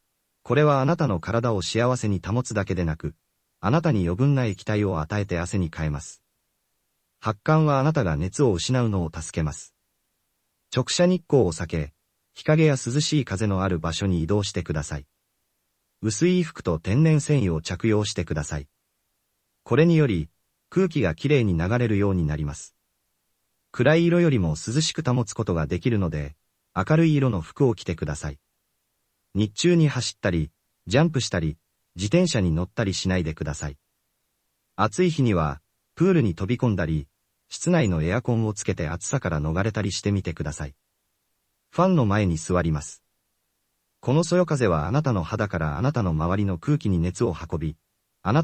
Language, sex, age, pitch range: Japanese, male, 40-59, 85-125 Hz